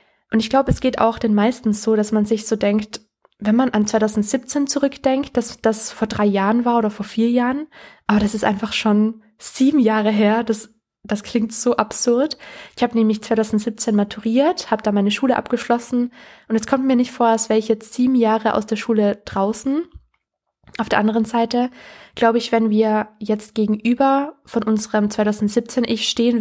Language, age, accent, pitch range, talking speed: German, 20-39, German, 210-240 Hz, 185 wpm